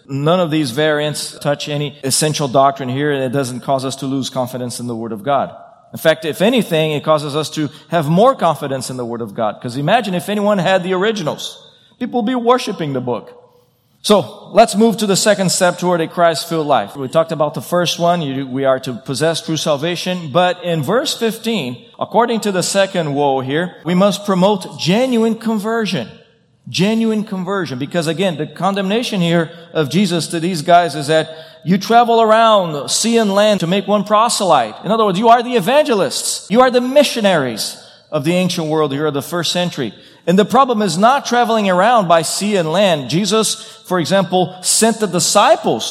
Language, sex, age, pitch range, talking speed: English, male, 40-59, 155-210 Hz, 195 wpm